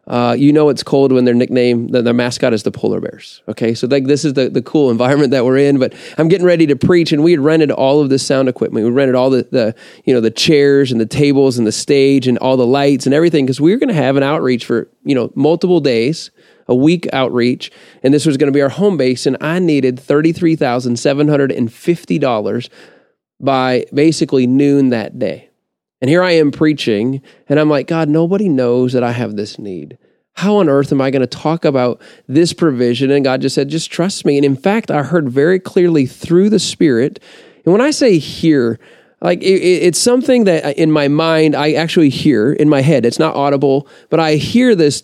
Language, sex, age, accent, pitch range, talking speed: English, male, 30-49, American, 130-160 Hz, 230 wpm